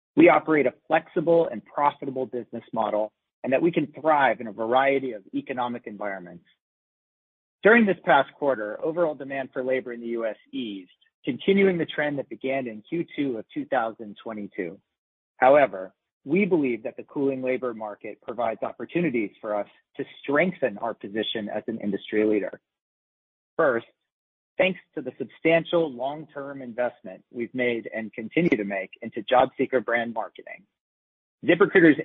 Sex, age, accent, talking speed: male, 40-59, American, 150 wpm